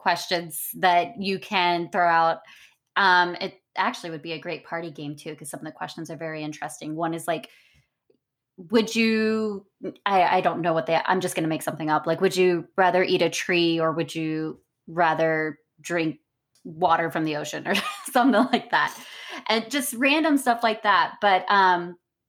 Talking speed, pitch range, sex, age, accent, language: 190 wpm, 165-210 Hz, female, 20-39, American, English